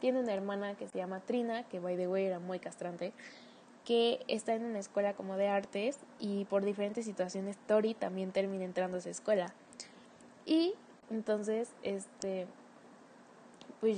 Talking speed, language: 160 wpm, Spanish